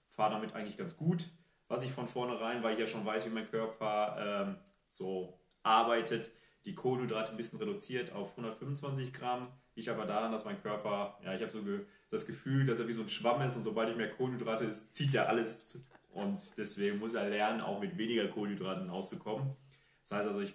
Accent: German